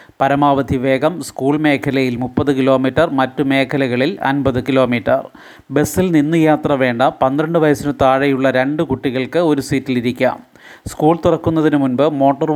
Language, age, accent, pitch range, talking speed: Malayalam, 30-49, native, 130-150 Hz, 120 wpm